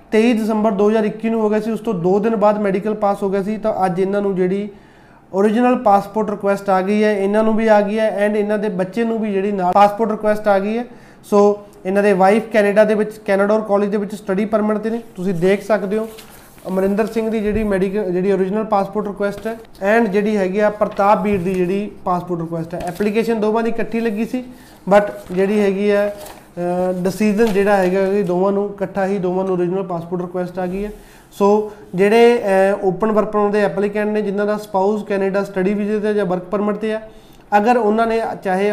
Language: Punjabi